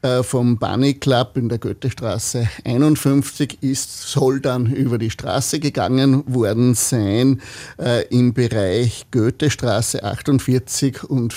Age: 50-69